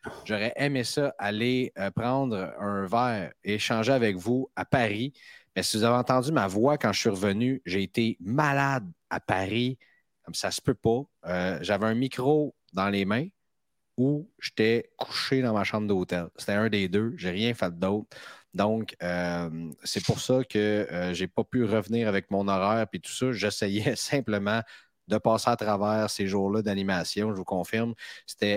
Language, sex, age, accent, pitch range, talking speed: French, male, 30-49, Canadian, 100-130 Hz, 185 wpm